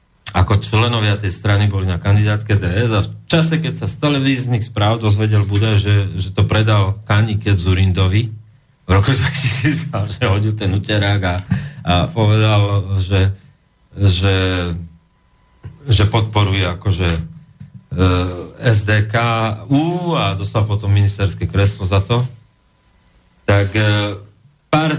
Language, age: Slovak, 40-59